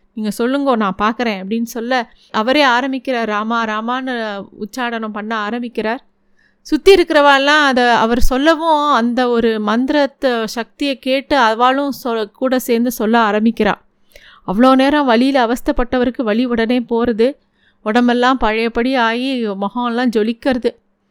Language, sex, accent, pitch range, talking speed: Tamil, female, native, 225-270 Hz, 110 wpm